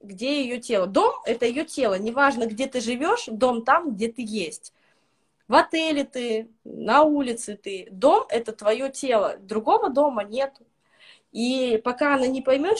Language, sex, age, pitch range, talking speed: Russian, female, 20-39, 215-280 Hz, 170 wpm